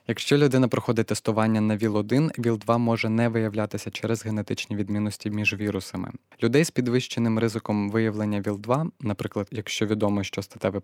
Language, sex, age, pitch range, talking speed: Ukrainian, male, 20-39, 105-120 Hz, 145 wpm